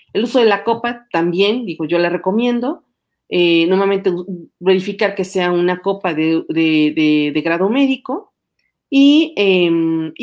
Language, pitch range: Spanish, 165-215 Hz